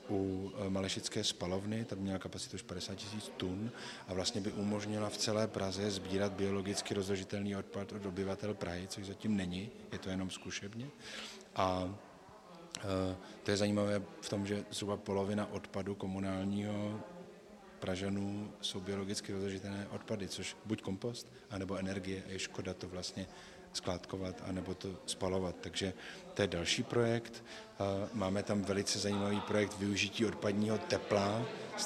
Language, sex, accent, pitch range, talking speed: Czech, male, native, 95-105 Hz, 145 wpm